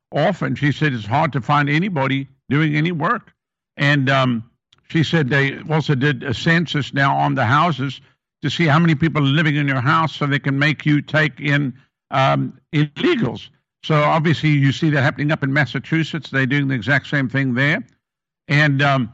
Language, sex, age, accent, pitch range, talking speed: English, male, 60-79, American, 135-160 Hz, 185 wpm